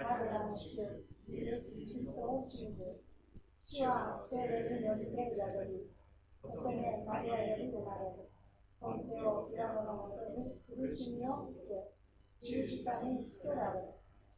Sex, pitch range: female, 195-250 Hz